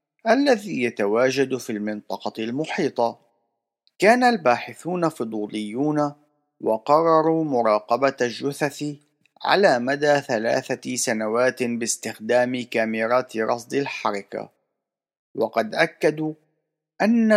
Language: Arabic